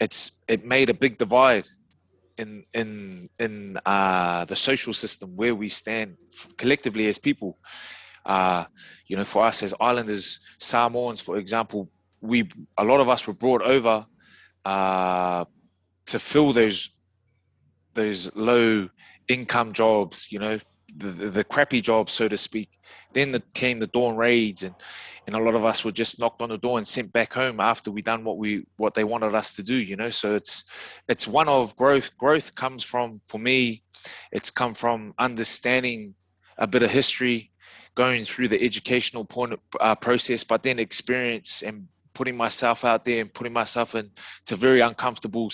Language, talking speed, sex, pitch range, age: English, 170 wpm, male, 105-125 Hz, 20-39